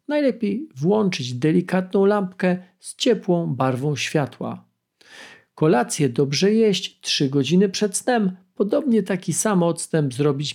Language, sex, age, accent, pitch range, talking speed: Polish, male, 40-59, native, 150-205 Hz, 115 wpm